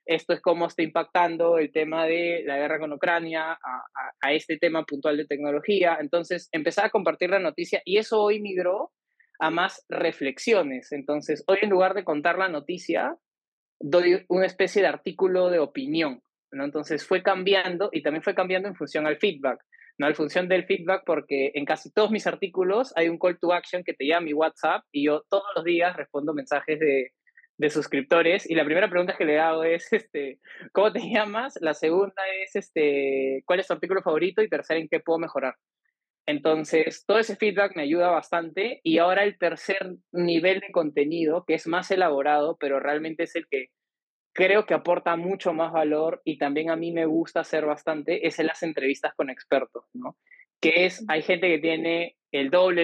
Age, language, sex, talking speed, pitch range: 20-39, Spanish, male, 195 wpm, 155-190 Hz